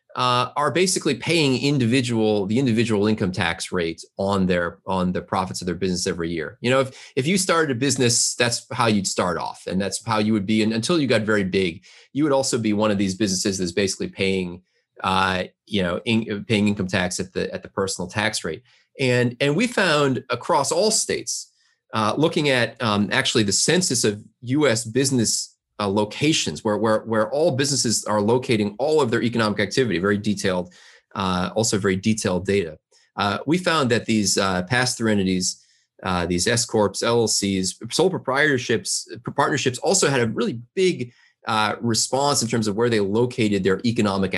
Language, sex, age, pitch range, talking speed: English, male, 30-49, 100-130 Hz, 190 wpm